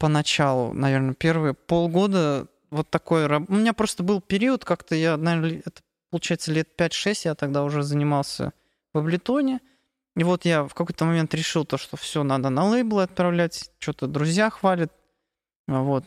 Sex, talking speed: male, 155 wpm